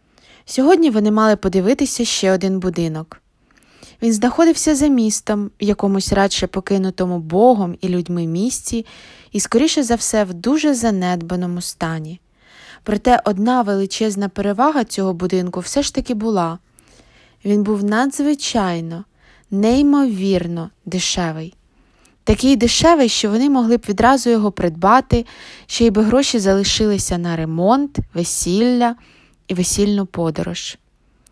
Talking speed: 120 wpm